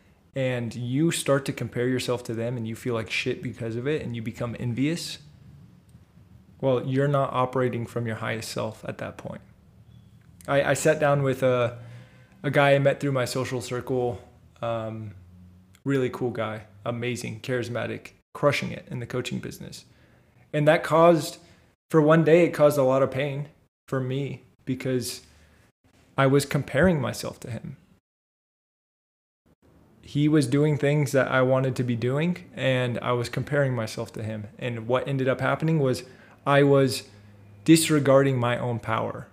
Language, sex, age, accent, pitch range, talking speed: English, male, 20-39, American, 115-140 Hz, 165 wpm